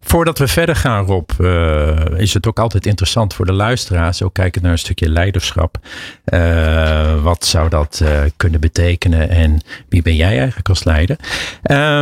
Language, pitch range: Dutch, 85-115 Hz